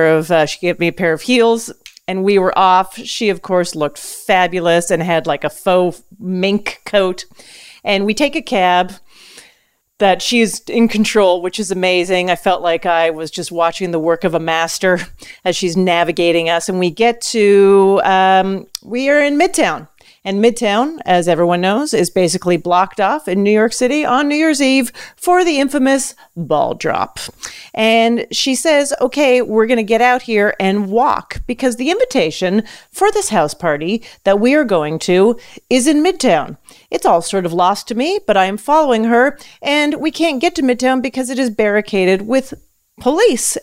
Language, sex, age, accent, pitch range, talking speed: English, female, 40-59, American, 180-245 Hz, 185 wpm